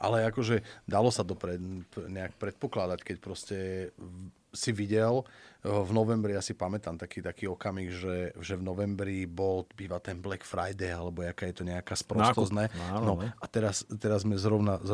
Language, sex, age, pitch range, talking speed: Slovak, male, 30-49, 90-110 Hz, 170 wpm